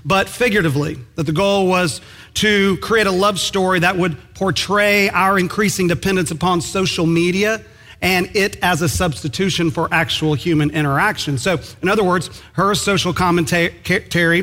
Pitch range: 150-180 Hz